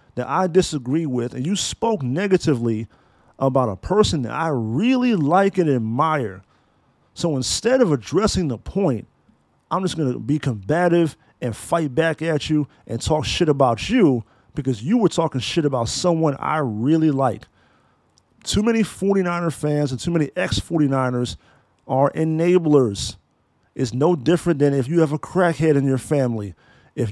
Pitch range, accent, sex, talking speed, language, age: 130-180 Hz, American, male, 155 wpm, English, 40-59